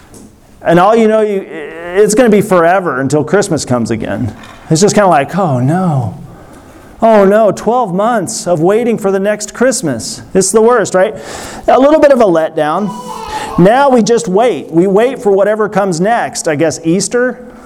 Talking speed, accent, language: 180 wpm, American, English